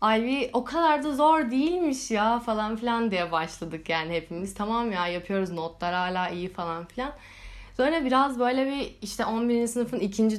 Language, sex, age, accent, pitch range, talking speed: Turkish, female, 10-29, native, 190-235 Hz, 170 wpm